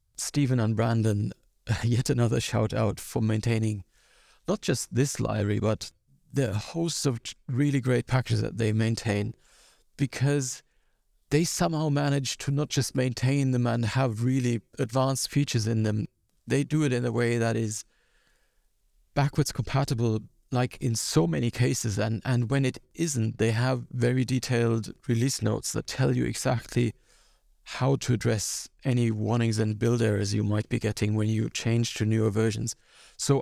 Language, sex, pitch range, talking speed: English, male, 110-130 Hz, 160 wpm